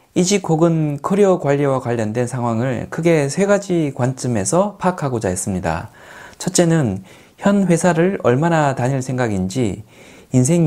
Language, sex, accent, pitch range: Korean, male, native, 120-175 Hz